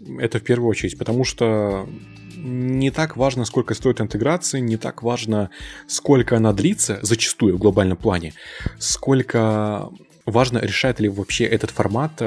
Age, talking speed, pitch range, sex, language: 20-39, 140 wpm, 100-120 Hz, male, Russian